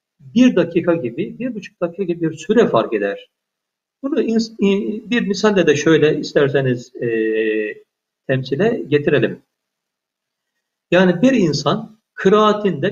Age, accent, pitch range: 50-69, native, 150-225 Hz